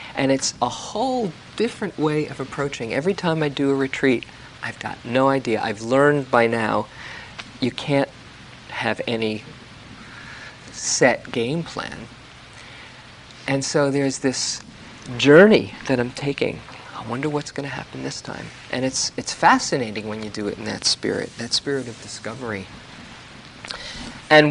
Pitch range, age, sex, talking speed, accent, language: 115-150 Hz, 40-59, male, 145 wpm, American, English